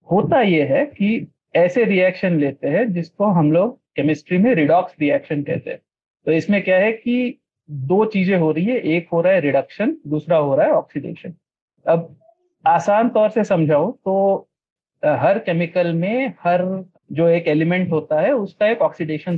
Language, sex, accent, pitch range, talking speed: Hindi, male, native, 160-215 Hz, 170 wpm